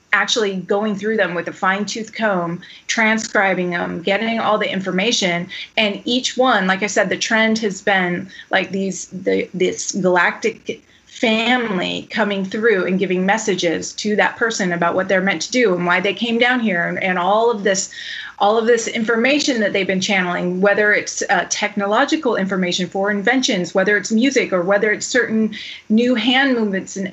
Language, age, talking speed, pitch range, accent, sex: English, 30-49, 180 wpm, 190-230 Hz, American, female